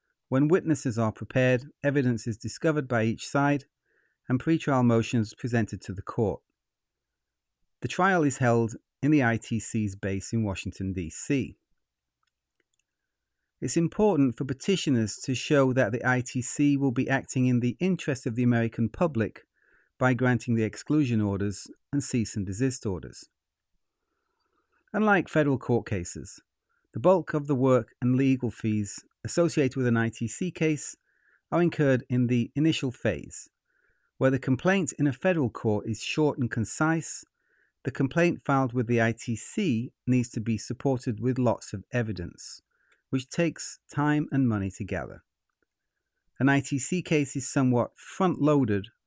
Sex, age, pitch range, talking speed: male, 40-59, 115-150 Hz, 145 wpm